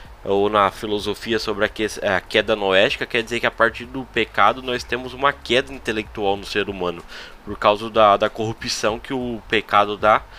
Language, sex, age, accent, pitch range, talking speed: Portuguese, male, 10-29, Brazilian, 110-140 Hz, 180 wpm